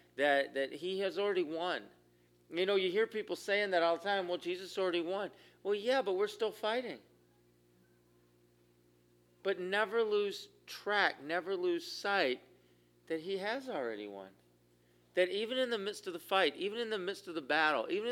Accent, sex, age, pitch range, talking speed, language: American, male, 40-59, 130-195 Hz, 180 wpm, English